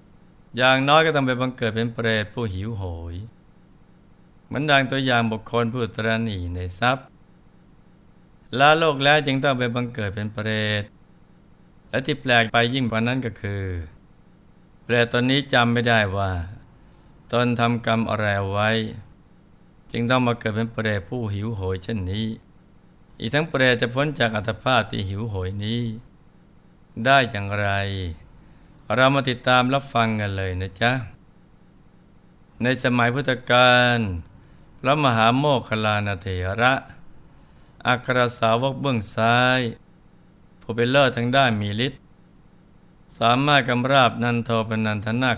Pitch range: 105-125 Hz